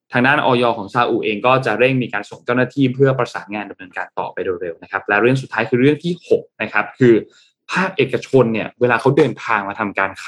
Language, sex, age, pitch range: Thai, male, 20-39, 105-140 Hz